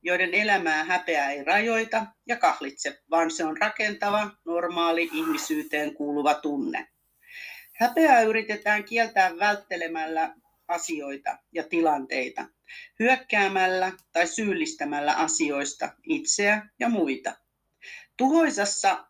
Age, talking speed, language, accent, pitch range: 40-59, 95 wpm, Finnish, native, 155-225 Hz